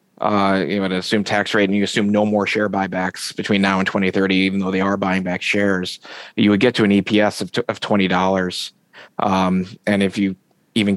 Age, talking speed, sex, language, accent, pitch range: 30-49, 210 wpm, male, English, American, 95-105 Hz